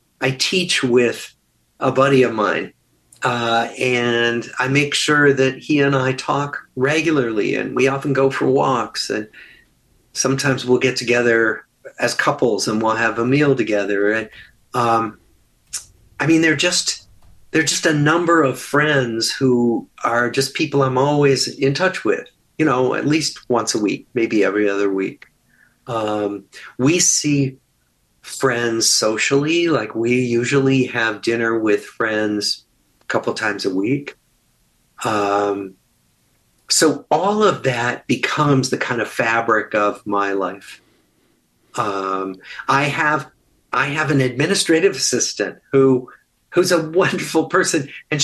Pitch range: 115-150 Hz